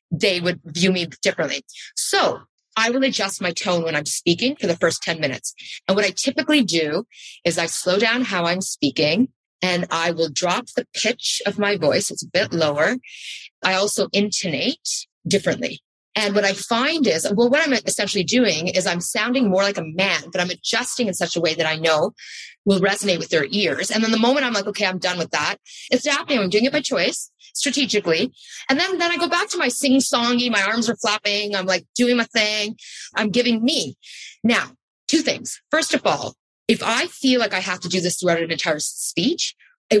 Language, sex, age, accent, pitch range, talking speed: English, female, 30-49, American, 180-245 Hz, 210 wpm